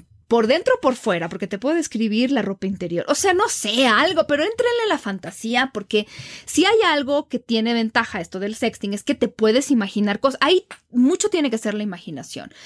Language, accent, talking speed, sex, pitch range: Spanish, Mexican, 215 wpm, female, 200-260 Hz